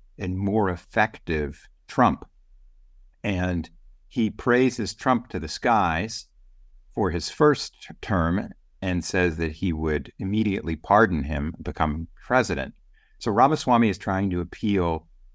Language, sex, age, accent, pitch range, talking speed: English, male, 50-69, American, 80-105 Hz, 120 wpm